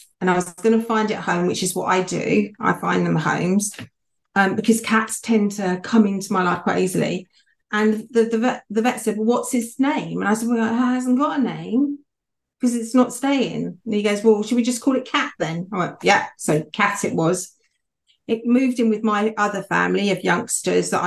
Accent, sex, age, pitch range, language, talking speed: British, female, 40-59, 185-225 Hz, English, 230 wpm